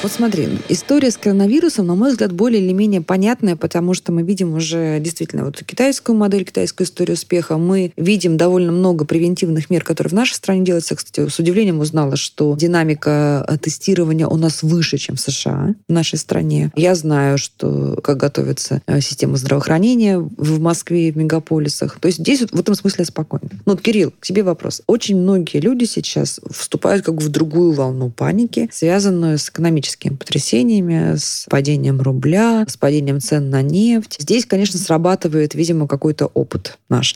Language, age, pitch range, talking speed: Russian, 20-39, 150-195 Hz, 170 wpm